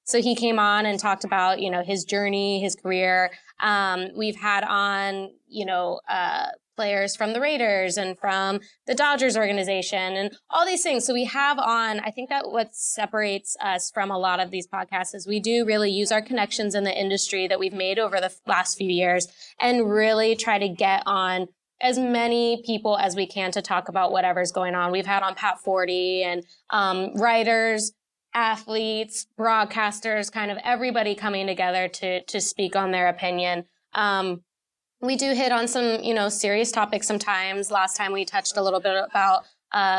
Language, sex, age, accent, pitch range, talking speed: English, female, 20-39, American, 190-225 Hz, 190 wpm